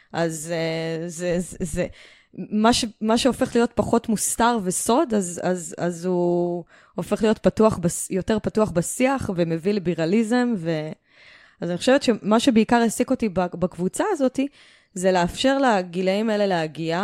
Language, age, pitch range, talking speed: English, 20-39, 170-225 Hz, 125 wpm